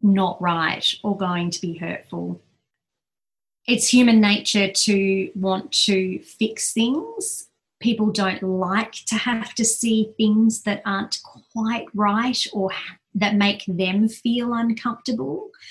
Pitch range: 190-230 Hz